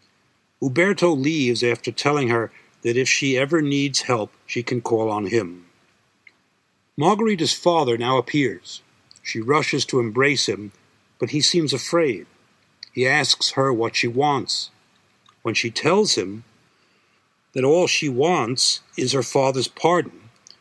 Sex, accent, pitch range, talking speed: male, American, 115-140 Hz, 135 wpm